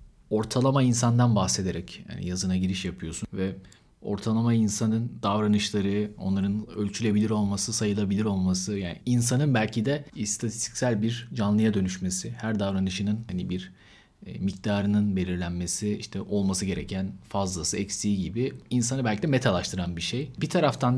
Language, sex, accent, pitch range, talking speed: Turkish, male, native, 100-125 Hz, 125 wpm